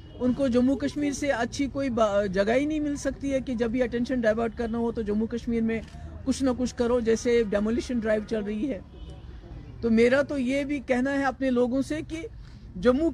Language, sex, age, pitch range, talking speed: Urdu, female, 50-69, 250-285 Hz, 210 wpm